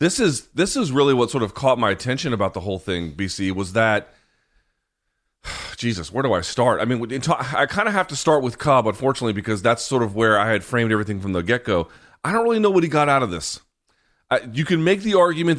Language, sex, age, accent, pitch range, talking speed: English, male, 30-49, American, 100-130 Hz, 245 wpm